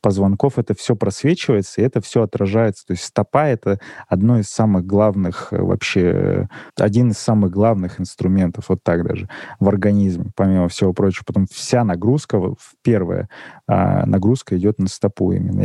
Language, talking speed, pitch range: Russian, 150 wpm, 95-115 Hz